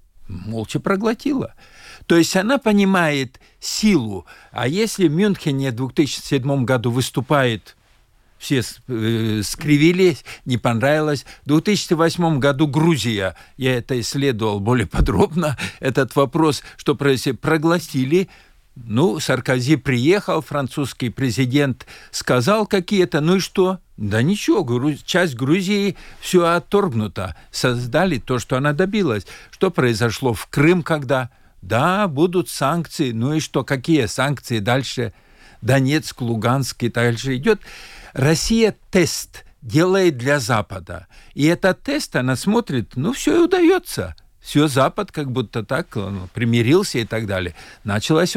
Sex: male